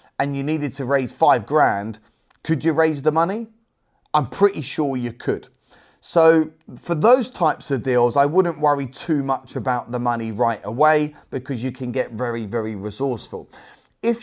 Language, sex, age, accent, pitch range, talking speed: English, male, 30-49, British, 130-170 Hz, 175 wpm